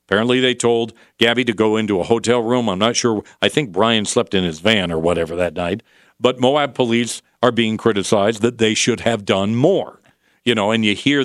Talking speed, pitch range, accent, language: 220 wpm, 105-120 Hz, American, English